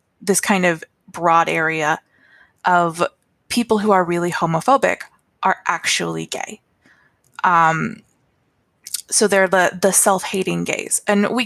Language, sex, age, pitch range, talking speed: English, female, 20-39, 175-215 Hz, 120 wpm